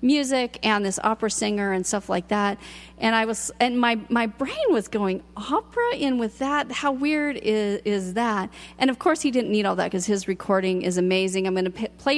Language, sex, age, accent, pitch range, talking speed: English, female, 40-59, American, 200-260 Hz, 220 wpm